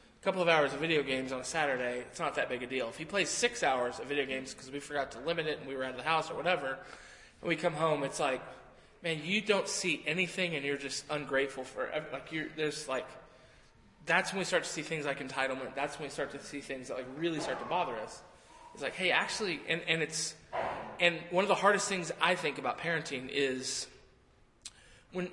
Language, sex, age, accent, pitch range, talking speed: English, male, 20-39, American, 135-175 Hz, 235 wpm